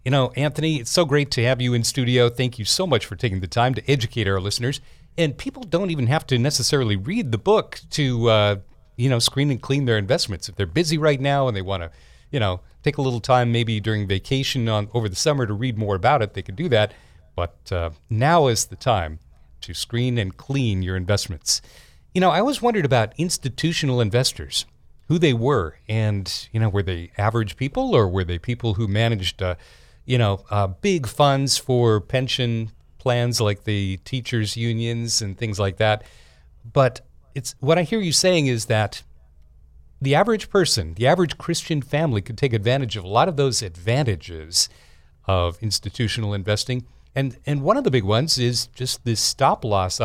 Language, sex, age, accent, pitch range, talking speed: English, male, 40-59, American, 100-135 Hz, 195 wpm